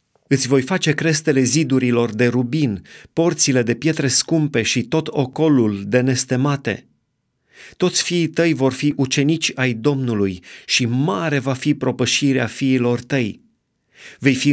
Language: Romanian